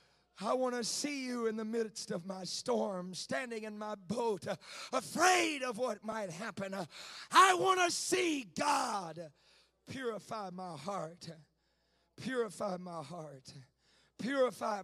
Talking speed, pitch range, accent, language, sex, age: 130 wpm, 210-315 Hz, American, English, male, 30-49